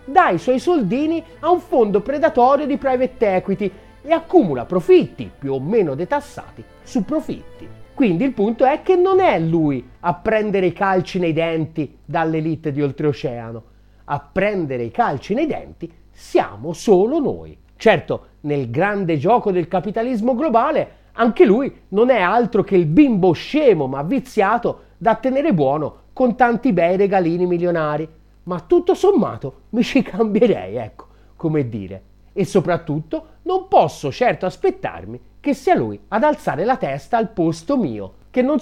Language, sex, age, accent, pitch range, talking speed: Italian, male, 30-49, native, 165-260 Hz, 155 wpm